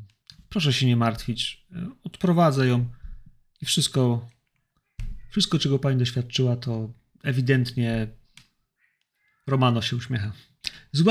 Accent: native